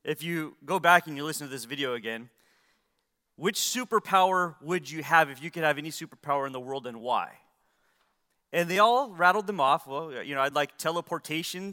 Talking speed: 200 wpm